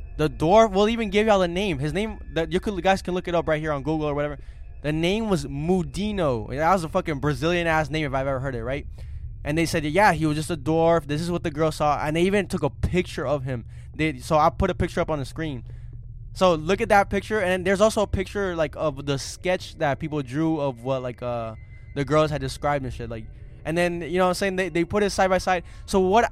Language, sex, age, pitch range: English, male, 10-29, 145-190 Hz